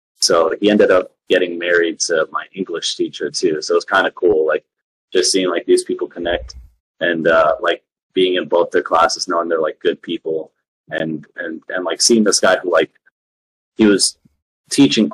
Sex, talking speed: male, 200 wpm